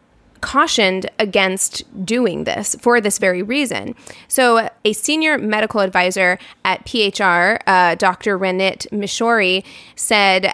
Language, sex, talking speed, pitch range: English, female, 115 wpm, 190-225 Hz